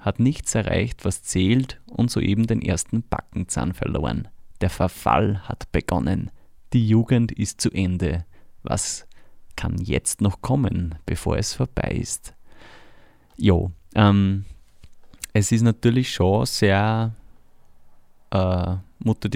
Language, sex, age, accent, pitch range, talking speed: German, male, 30-49, Swiss, 95-115 Hz, 120 wpm